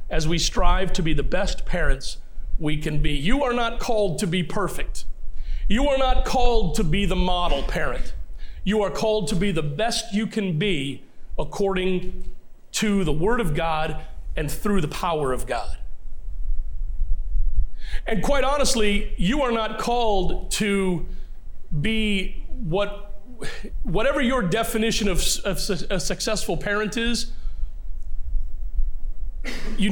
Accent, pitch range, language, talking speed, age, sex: American, 160-225 Hz, English, 140 wpm, 40-59, male